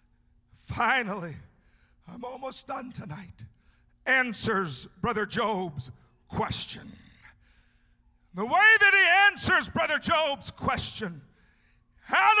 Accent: American